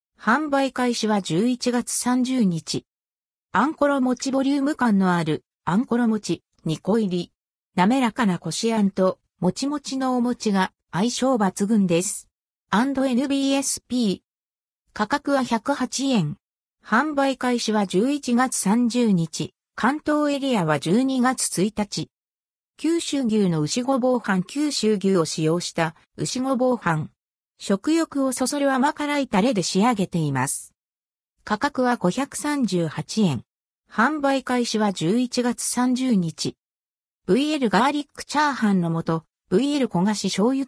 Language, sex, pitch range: Japanese, female, 175-260 Hz